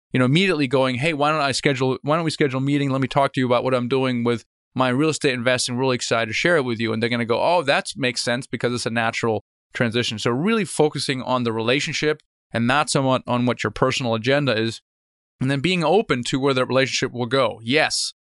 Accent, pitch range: American, 120-145 Hz